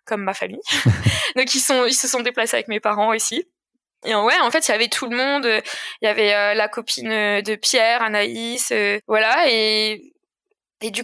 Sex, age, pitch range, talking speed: female, 20-39, 210-250 Hz, 205 wpm